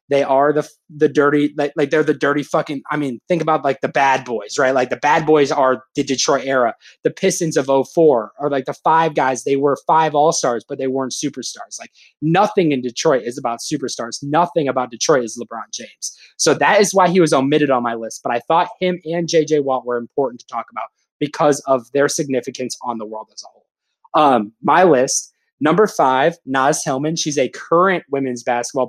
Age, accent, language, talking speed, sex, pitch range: 20-39, American, English, 215 wpm, male, 125-155 Hz